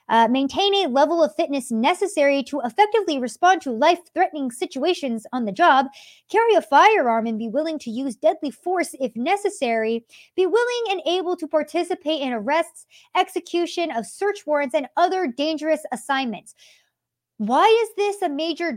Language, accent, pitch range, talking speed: English, American, 245-320 Hz, 155 wpm